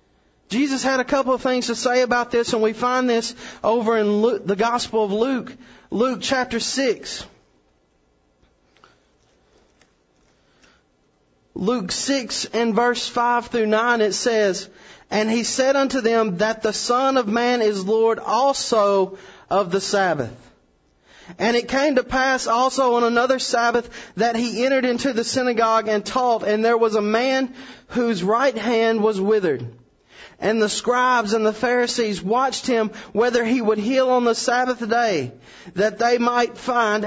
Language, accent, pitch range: English, American, 200-245 Hz